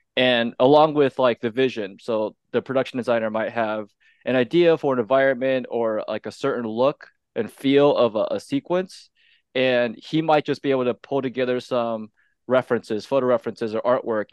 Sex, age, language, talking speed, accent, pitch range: male, 20-39, English, 180 wpm, American, 115-140 Hz